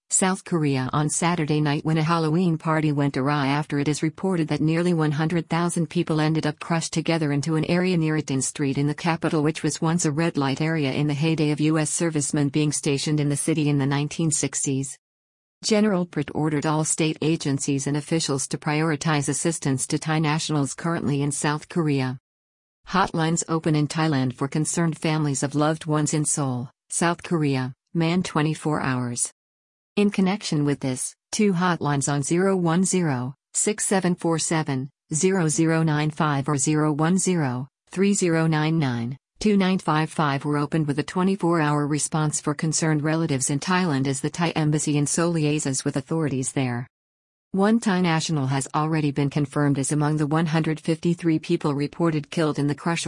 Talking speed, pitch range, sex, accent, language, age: 155 wpm, 145-165 Hz, female, American, English, 50-69